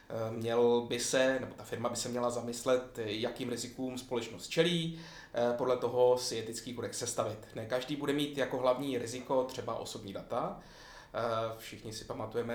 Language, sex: Czech, male